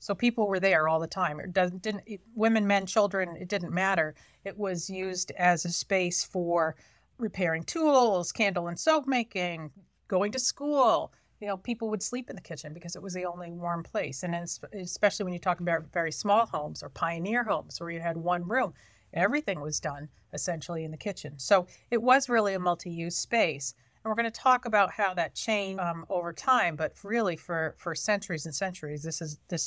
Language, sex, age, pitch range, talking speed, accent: English, female, 40-59, 160-205 Hz, 205 wpm, American